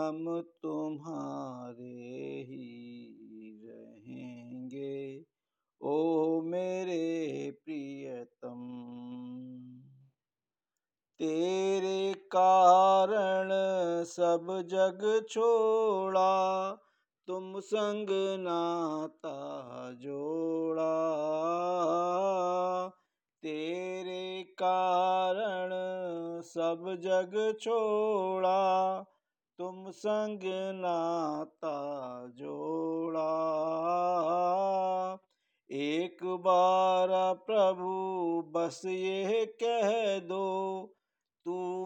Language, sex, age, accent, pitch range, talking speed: Hindi, male, 50-69, native, 160-190 Hz, 45 wpm